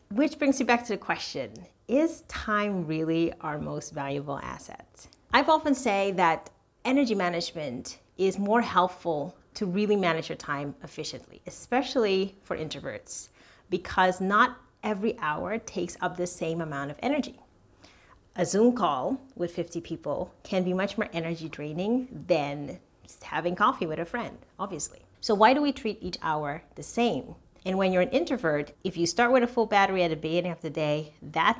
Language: English